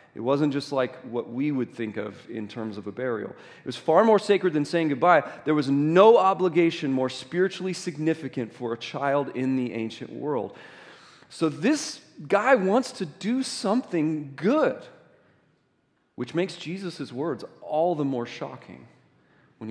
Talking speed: 160 wpm